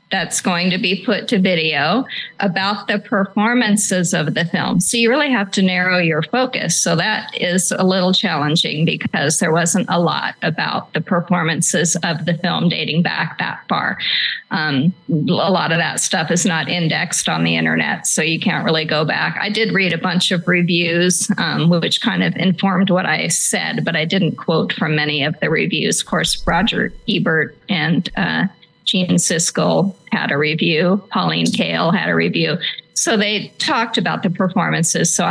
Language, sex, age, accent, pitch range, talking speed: English, female, 40-59, American, 165-205 Hz, 180 wpm